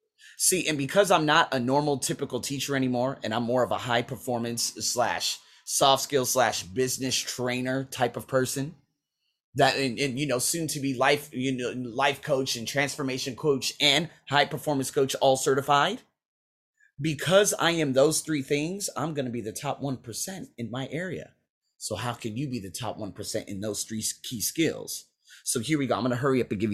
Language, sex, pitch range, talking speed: English, male, 115-145 Hz, 195 wpm